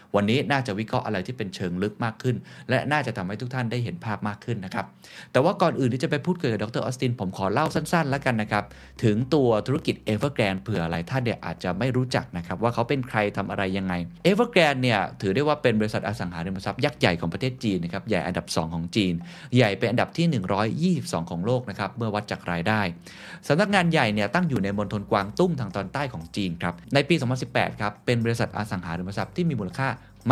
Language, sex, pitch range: Thai, male, 100-135 Hz